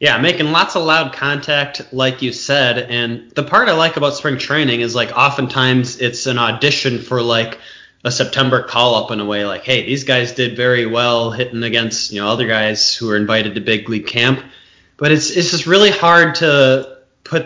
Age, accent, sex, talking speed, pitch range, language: 20-39, American, male, 205 wpm, 115-135 Hz, English